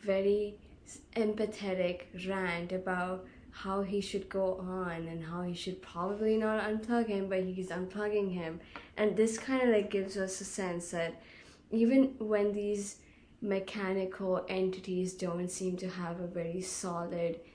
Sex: female